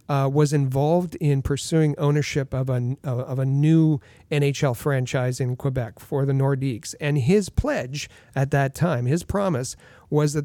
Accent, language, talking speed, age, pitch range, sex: American, English, 160 wpm, 40-59, 130-165 Hz, male